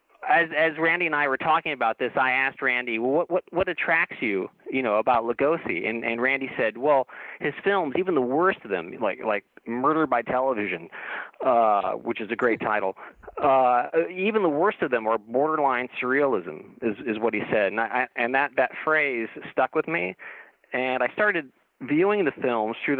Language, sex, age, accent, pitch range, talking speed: English, male, 40-59, American, 115-150 Hz, 195 wpm